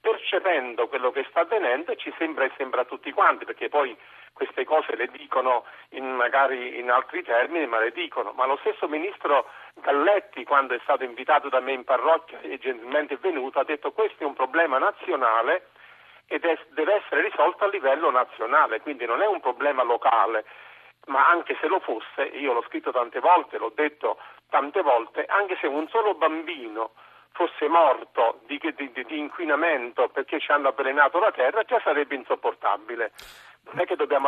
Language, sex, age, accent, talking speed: Italian, male, 50-69, native, 180 wpm